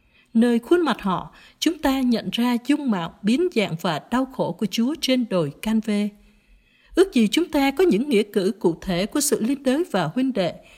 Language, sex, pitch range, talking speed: Vietnamese, female, 200-275 Hz, 210 wpm